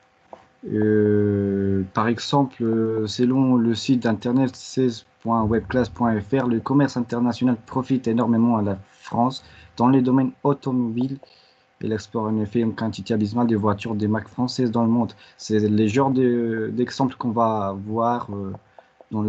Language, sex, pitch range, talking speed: French, male, 105-125 Hz, 145 wpm